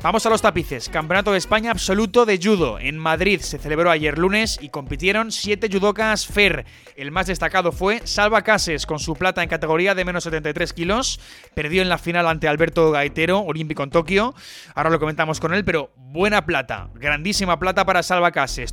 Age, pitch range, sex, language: 20-39, 150-190 Hz, male, Spanish